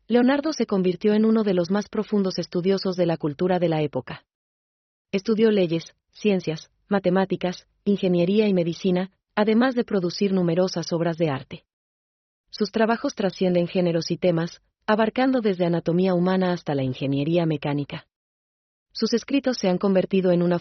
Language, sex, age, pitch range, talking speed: Spanish, female, 30-49, 165-200 Hz, 150 wpm